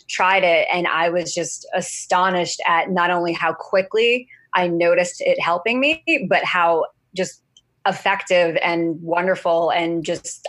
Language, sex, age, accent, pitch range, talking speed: English, female, 20-39, American, 165-180 Hz, 145 wpm